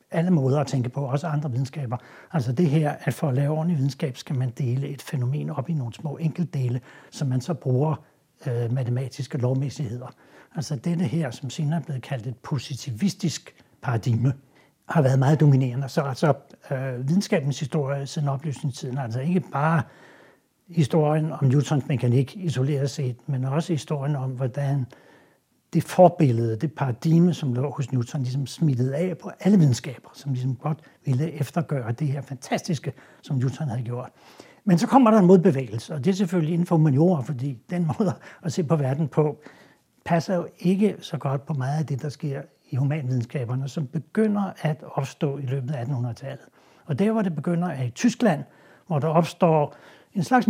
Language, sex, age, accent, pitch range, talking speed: Danish, male, 60-79, native, 135-165 Hz, 180 wpm